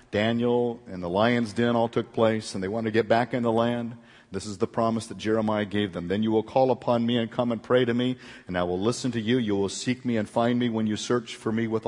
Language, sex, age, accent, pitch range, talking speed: English, male, 50-69, American, 95-125 Hz, 285 wpm